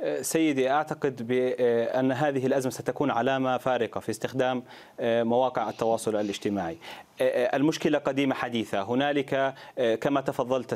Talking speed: 105 wpm